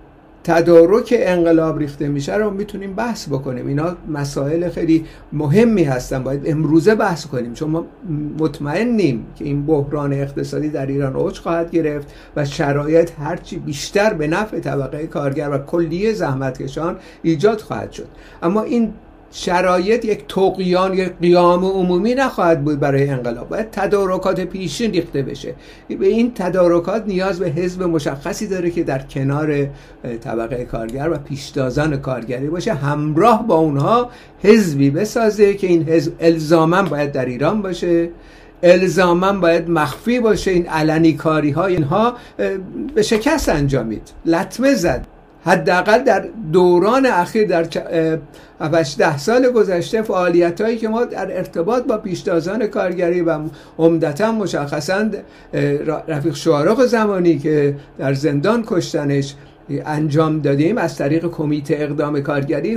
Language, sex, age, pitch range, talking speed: Persian, male, 50-69, 150-200 Hz, 135 wpm